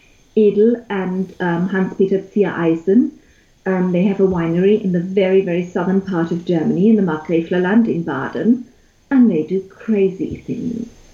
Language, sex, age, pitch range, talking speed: English, female, 40-59, 185-230 Hz, 155 wpm